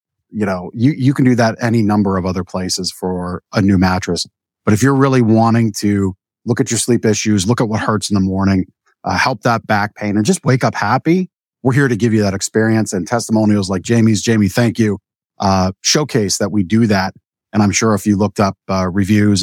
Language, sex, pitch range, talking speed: English, male, 95-115 Hz, 225 wpm